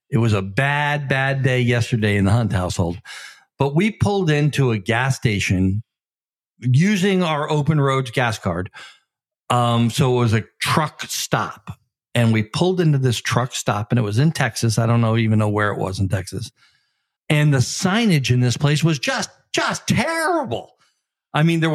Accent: American